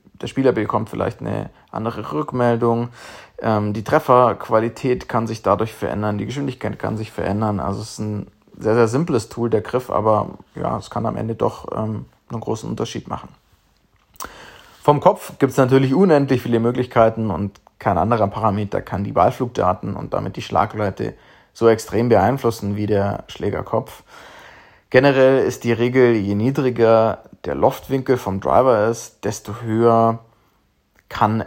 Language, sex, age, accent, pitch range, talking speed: German, male, 30-49, German, 105-120 Hz, 155 wpm